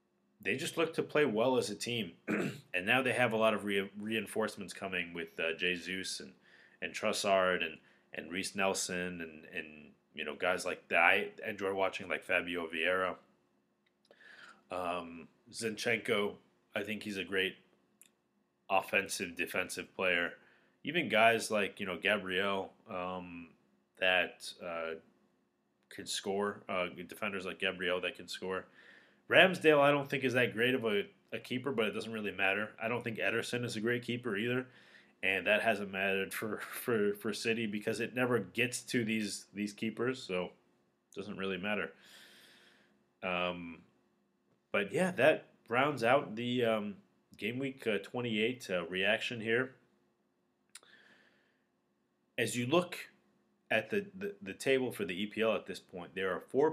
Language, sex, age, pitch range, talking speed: English, male, 30-49, 95-120 Hz, 155 wpm